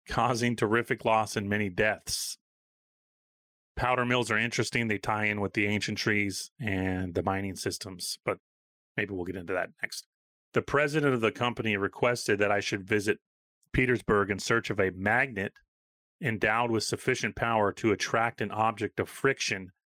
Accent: American